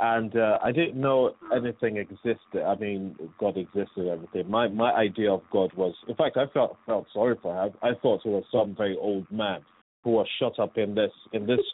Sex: male